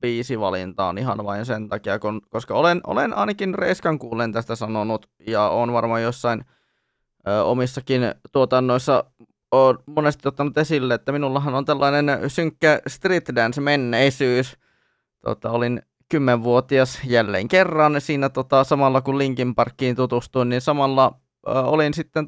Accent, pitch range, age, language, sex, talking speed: native, 115-140 Hz, 20-39, Finnish, male, 130 wpm